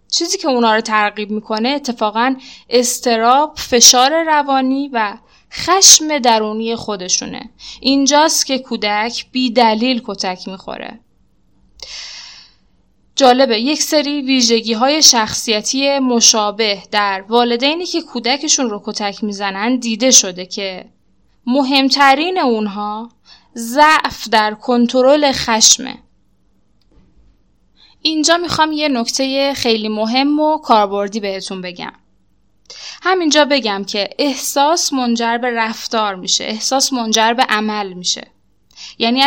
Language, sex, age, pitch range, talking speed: Persian, female, 10-29, 215-275 Hz, 100 wpm